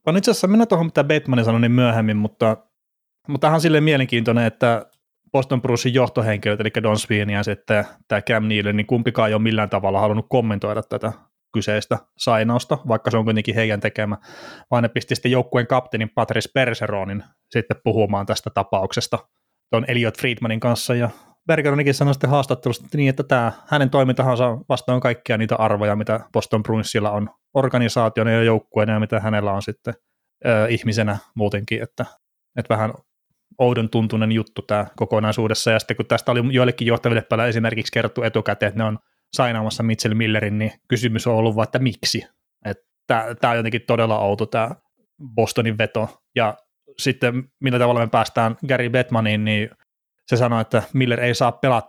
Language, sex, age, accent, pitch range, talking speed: Finnish, male, 30-49, native, 110-125 Hz, 160 wpm